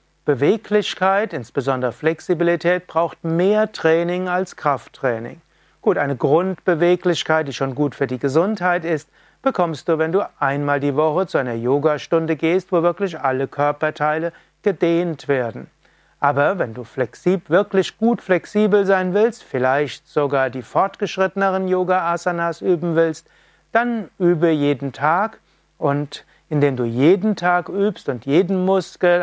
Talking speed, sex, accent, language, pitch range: 130 wpm, male, German, German, 140-180 Hz